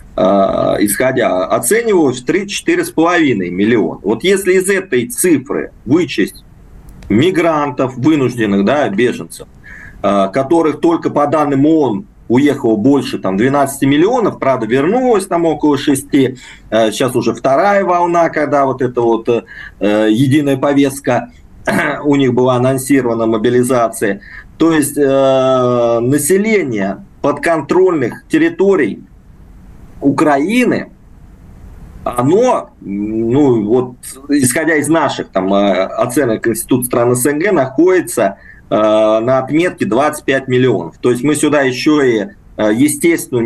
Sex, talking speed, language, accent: male, 105 wpm, Russian, native